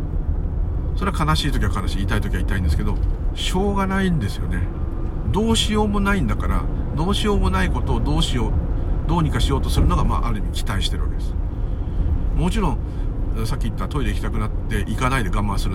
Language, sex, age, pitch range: Japanese, male, 50-69, 75-100 Hz